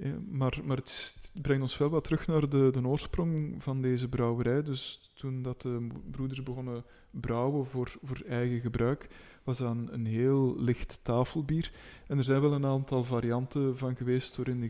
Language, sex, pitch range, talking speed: Dutch, male, 125-140 Hz, 190 wpm